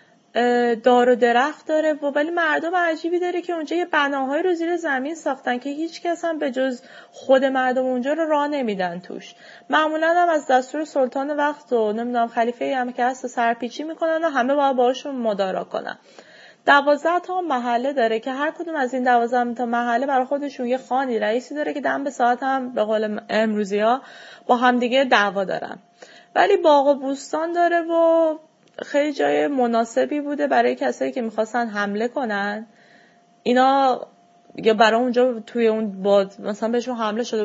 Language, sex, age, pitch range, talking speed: Persian, female, 20-39, 230-295 Hz, 170 wpm